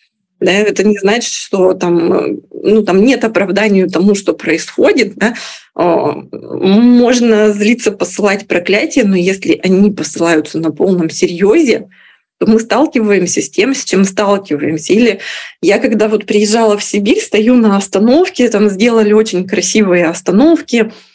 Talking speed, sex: 130 wpm, female